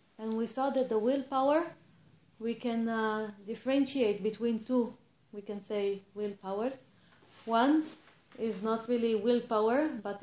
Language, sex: English, female